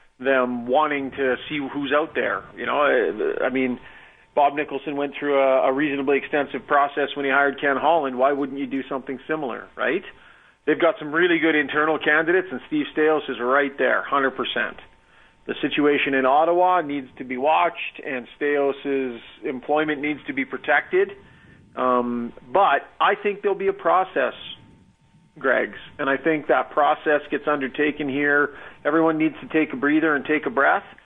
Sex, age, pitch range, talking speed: male, 40-59, 130-160 Hz, 175 wpm